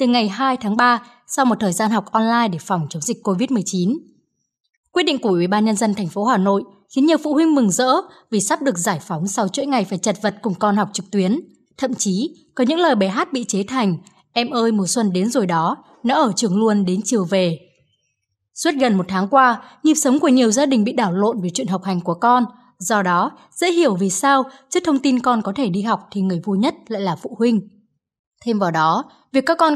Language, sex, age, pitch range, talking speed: Vietnamese, female, 20-39, 195-260 Hz, 245 wpm